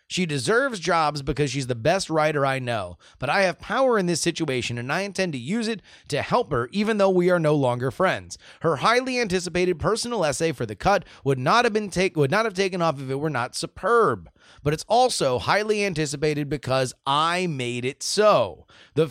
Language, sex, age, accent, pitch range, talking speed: English, male, 30-49, American, 130-190 Hz, 210 wpm